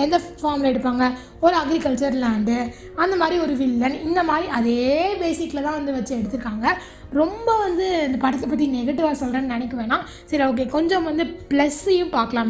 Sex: female